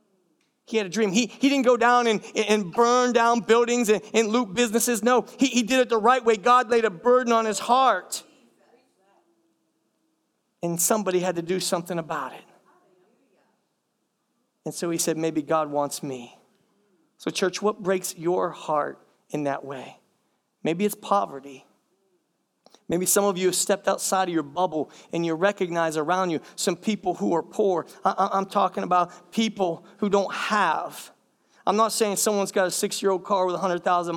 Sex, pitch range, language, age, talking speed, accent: male, 170-215 Hz, English, 40-59, 170 wpm, American